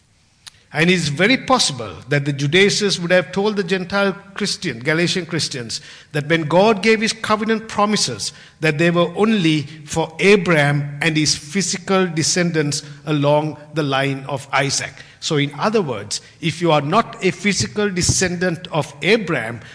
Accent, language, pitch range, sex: Indian, English, 140-195 Hz, male